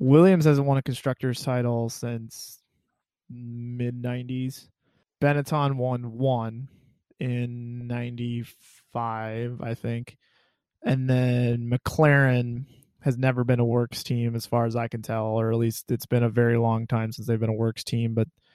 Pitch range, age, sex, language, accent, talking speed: 120-140 Hz, 20-39, male, English, American, 150 wpm